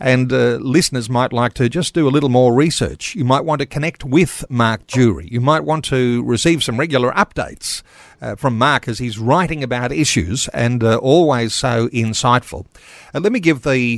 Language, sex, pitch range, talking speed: English, male, 115-150 Hz, 200 wpm